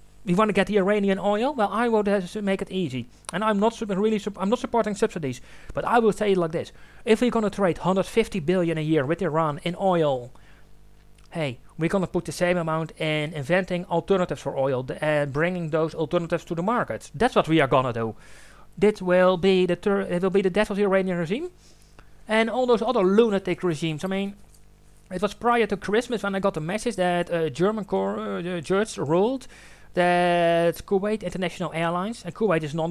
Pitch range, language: 165-205 Hz, English